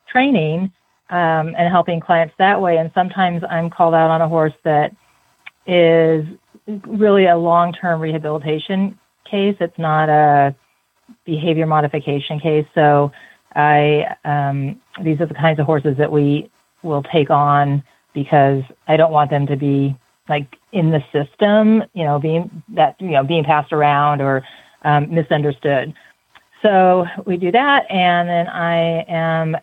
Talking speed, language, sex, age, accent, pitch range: 150 wpm, English, female, 40-59, American, 150-180 Hz